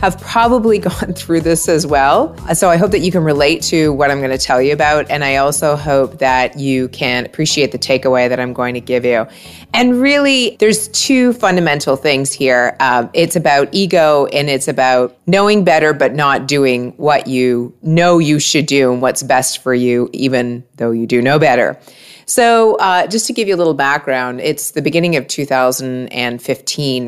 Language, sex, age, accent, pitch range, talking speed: English, female, 30-49, American, 125-160 Hz, 195 wpm